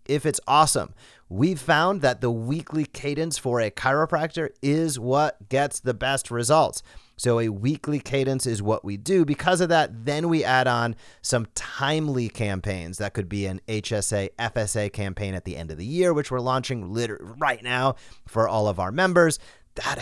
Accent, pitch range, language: American, 105-135 Hz, English